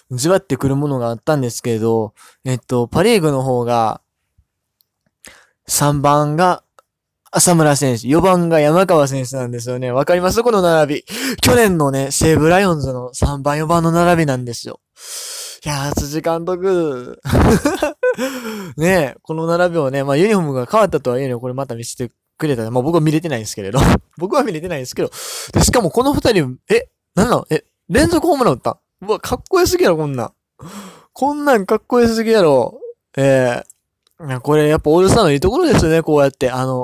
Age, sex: 20-39, male